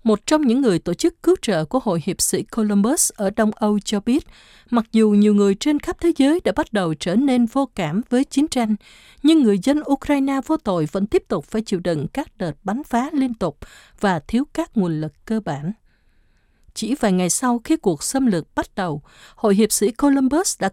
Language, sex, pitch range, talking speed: Vietnamese, female, 195-275 Hz, 220 wpm